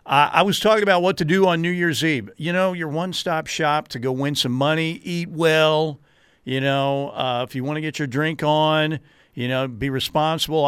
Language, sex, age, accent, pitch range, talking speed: English, male, 50-69, American, 130-155 Hz, 215 wpm